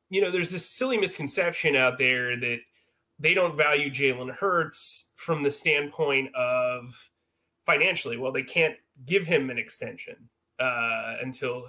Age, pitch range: 30-49, 130-175 Hz